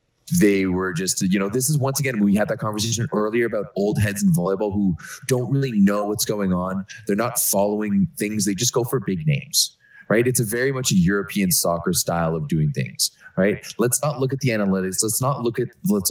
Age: 20-39